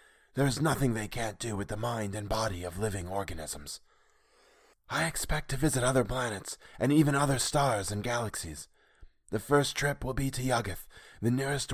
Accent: American